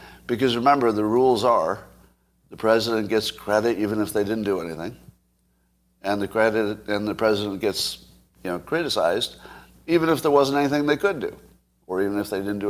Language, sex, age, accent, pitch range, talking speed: English, male, 60-79, American, 95-130 Hz, 185 wpm